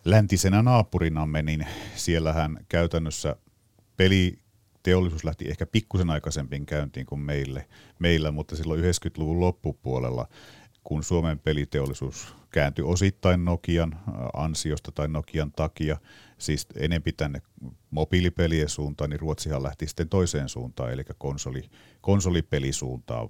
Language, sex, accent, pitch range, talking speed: Finnish, male, native, 75-85 Hz, 110 wpm